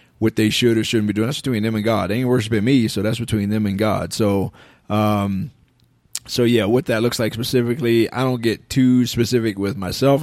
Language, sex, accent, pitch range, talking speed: English, male, American, 105-125 Hz, 225 wpm